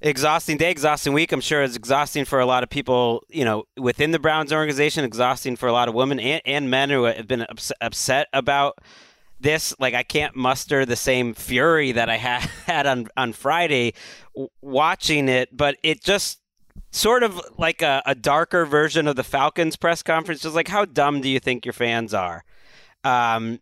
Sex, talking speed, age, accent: male, 190 wpm, 30-49, American